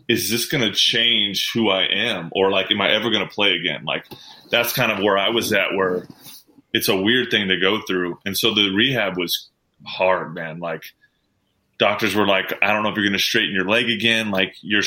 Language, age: English, 20-39